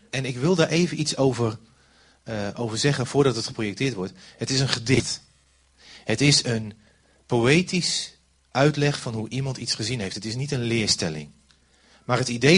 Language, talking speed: Dutch, 175 wpm